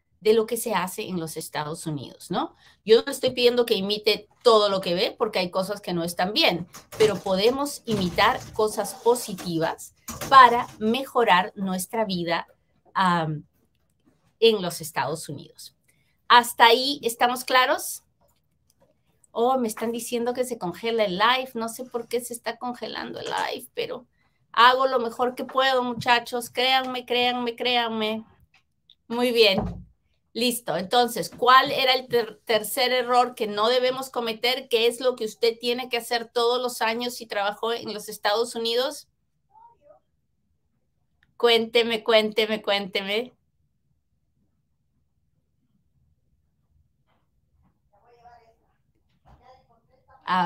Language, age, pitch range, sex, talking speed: Spanish, 30-49, 200-245 Hz, female, 125 wpm